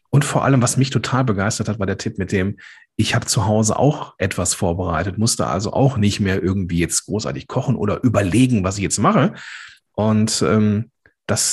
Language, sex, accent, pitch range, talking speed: German, male, German, 105-130 Hz, 200 wpm